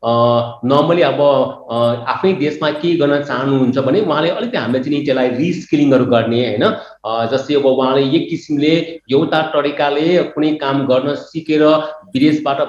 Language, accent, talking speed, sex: English, Indian, 155 wpm, male